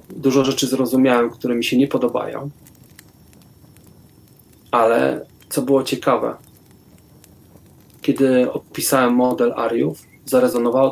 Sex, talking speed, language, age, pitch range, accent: male, 95 wpm, Polish, 30-49, 125-140 Hz, native